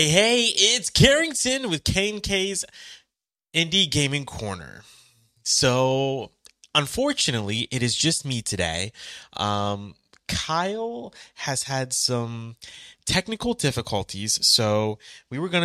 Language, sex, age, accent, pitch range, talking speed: English, male, 20-39, American, 105-155 Hz, 105 wpm